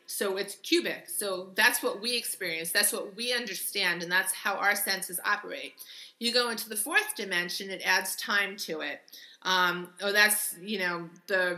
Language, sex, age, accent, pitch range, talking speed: English, female, 30-49, American, 185-230 Hz, 180 wpm